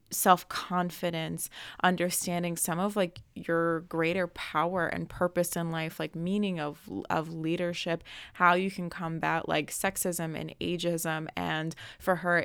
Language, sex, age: English, female, 20-39